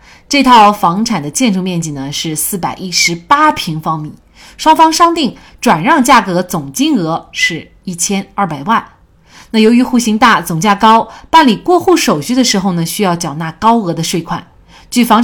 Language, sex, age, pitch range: Chinese, female, 30-49, 170-245 Hz